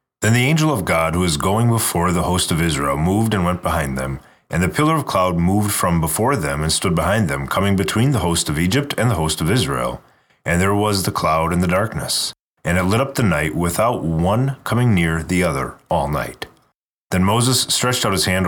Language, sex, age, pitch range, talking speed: English, male, 30-49, 85-115 Hz, 225 wpm